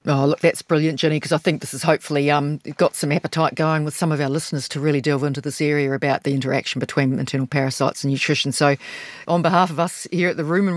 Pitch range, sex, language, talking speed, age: 150-185 Hz, female, English, 245 wpm, 40-59